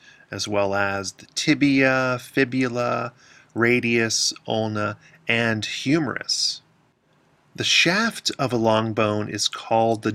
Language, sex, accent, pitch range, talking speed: English, male, American, 105-135 Hz, 110 wpm